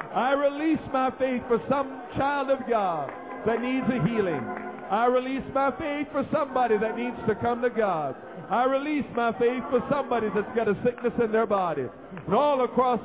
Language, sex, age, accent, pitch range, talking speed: English, male, 50-69, American, 235-270 Hz, 190 wpm